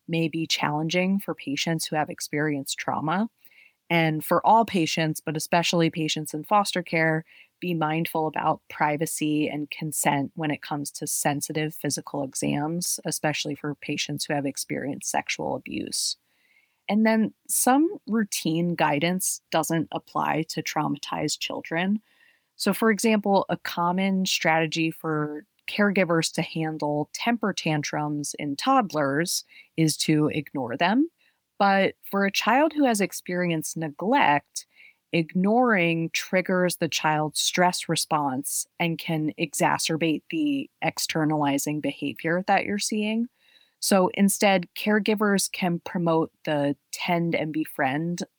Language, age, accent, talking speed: English, 30-49, American, 125 wpm